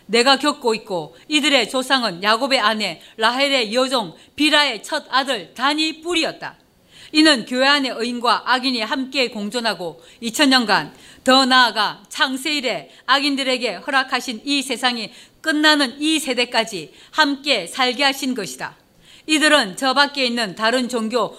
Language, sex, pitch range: Korean, female, 230-290 Hz